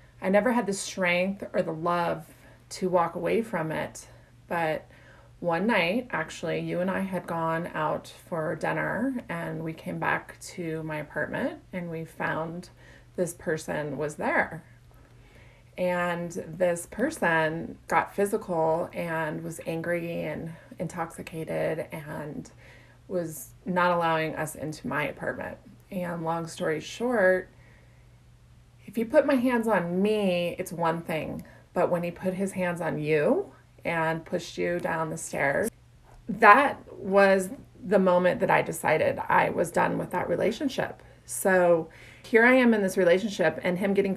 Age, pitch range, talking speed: 20-39, 160-185 Hz, 145 wpm